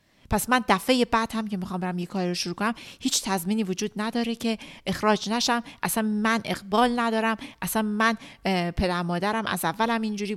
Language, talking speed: Persian, 180 wpm